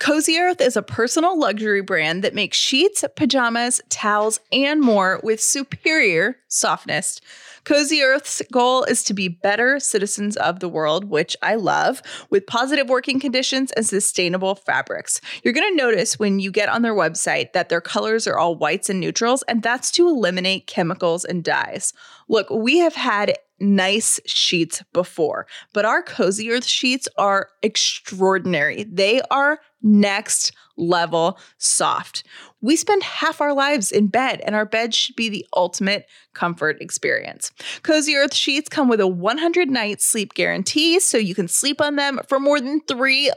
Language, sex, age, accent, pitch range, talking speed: English, female, 20-39, American, 200-280 Hz, 165 wpm